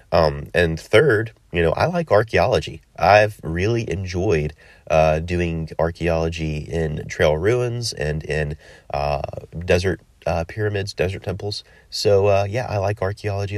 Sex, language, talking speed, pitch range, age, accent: male, English, 135 wpm, 80-105 Hz, 30-49, American